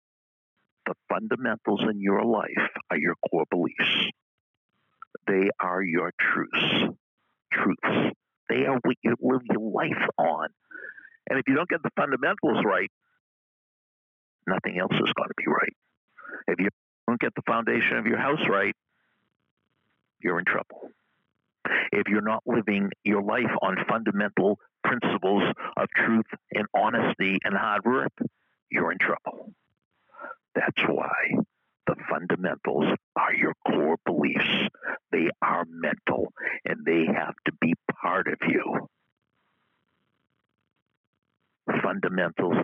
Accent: American